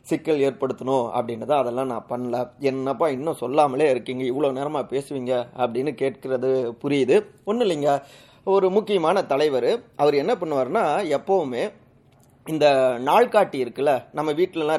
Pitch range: 130-170 Hz